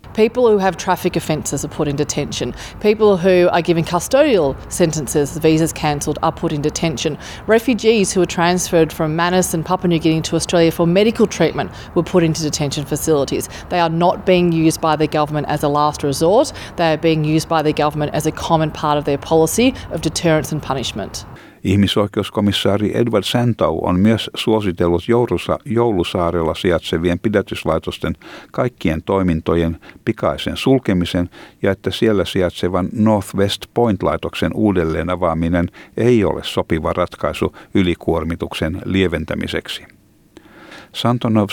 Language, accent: Finnish, Australian